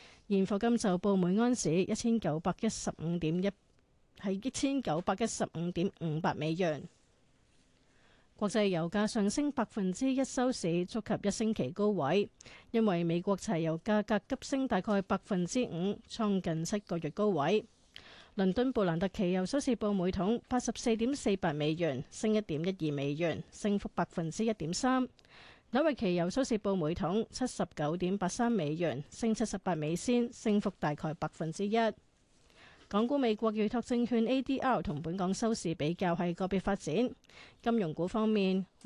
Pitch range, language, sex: 175-225 Hz, Chinese, female